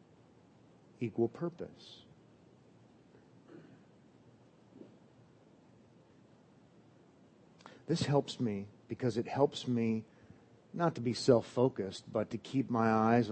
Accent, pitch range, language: American, 110-140 Hz, English